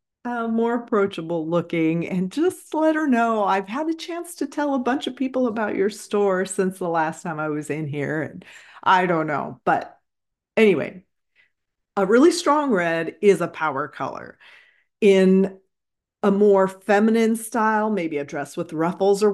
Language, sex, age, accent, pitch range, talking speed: English, female, 40-59, American, 170-230 Hz, 170 wpm